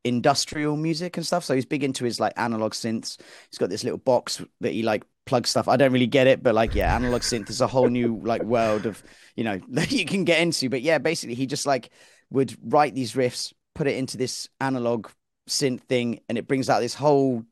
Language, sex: English, male